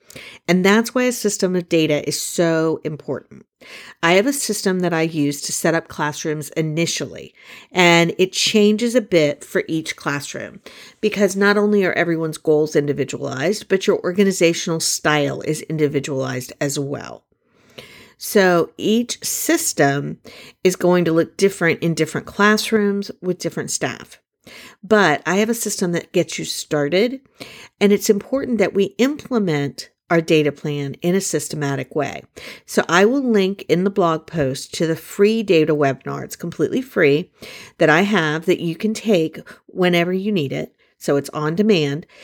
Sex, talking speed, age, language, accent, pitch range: female, 160 wpm, 50-69, English, American, 150-195 Hz